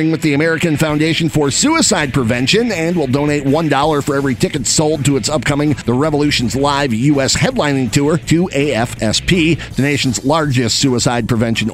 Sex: male